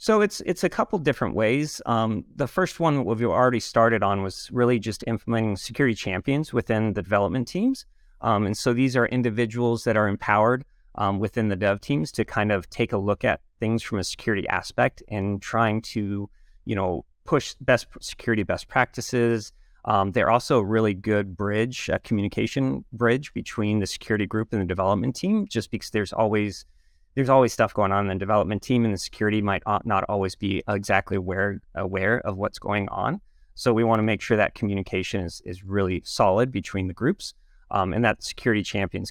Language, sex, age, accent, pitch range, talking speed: English, male, 30-49, American, 100-120 Hz, 195 wpm